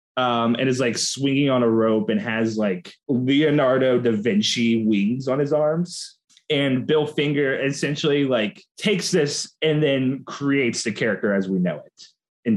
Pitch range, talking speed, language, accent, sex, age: 110-150 Hz, 165 wpm, English, American, male, 20-39